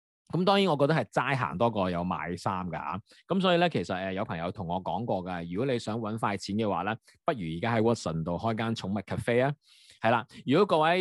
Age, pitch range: 20-39, 110-180 Hz